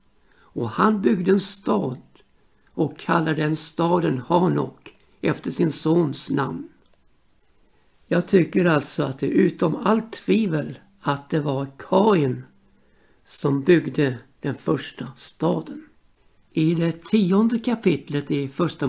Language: Swedish